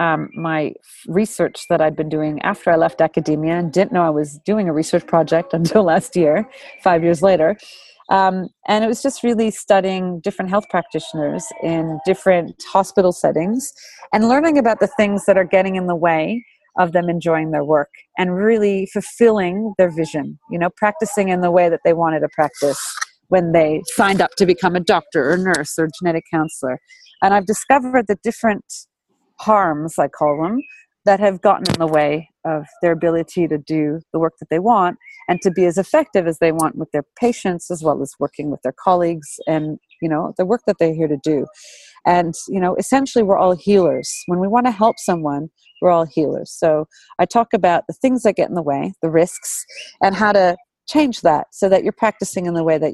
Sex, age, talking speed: female, 30-49, 205 wpm